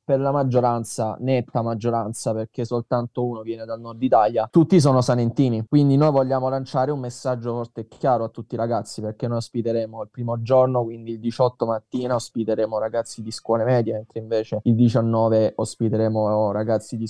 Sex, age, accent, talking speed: male, 10-29, native, 175 wpm